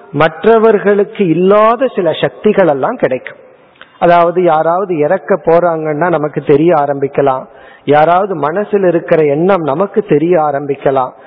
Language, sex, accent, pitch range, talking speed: Tamil, male, native, 165-215 Hz, 105 wpm